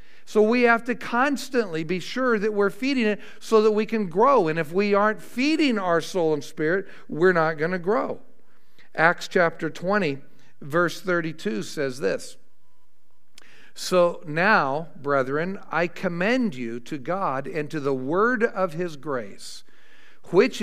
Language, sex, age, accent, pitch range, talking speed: English, male, 50-69, American, 150-195 Hz, 155 wpm